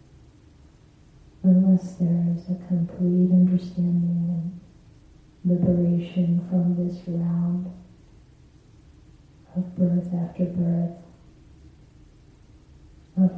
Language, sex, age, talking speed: English, female, 30-49, 70 wpm